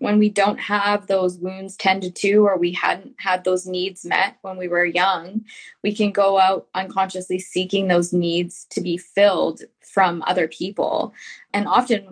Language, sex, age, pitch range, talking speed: English, female, 20-39, 180-210 Hz, 180 wpm